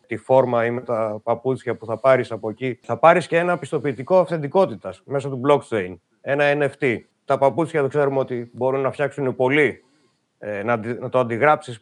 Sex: male